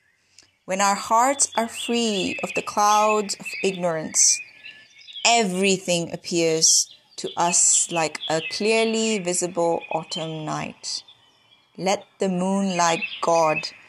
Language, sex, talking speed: English, female, 105 wpm